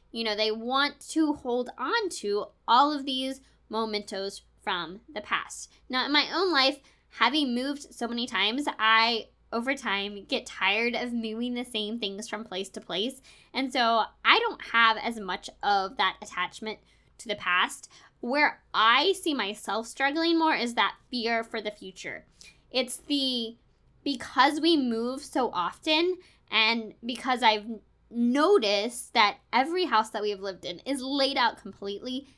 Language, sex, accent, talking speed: English, female, American, 160 wpm